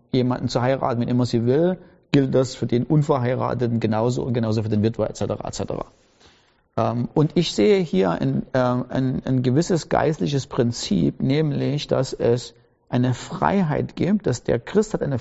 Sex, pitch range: male, 125-150 Hz